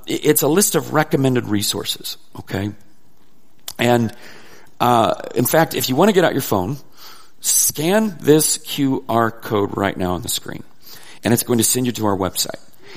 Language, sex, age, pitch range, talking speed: English, male, 40-59, 100-130 Hz, 170 wpm